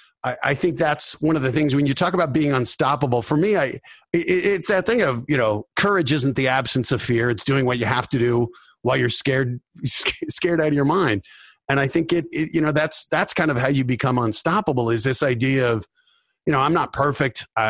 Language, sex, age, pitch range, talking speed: English, male, 40-59, 115-145 Hz, 225 wpm